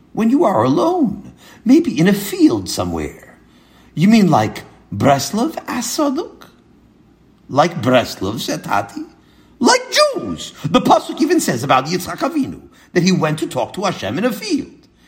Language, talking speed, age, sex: English, 145 wpm, 50-69, male